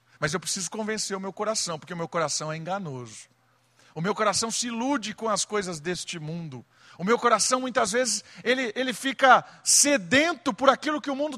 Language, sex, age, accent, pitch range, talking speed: Portuguese, male, 50-69, Brazilian, 155-220 Hz, 195 wpm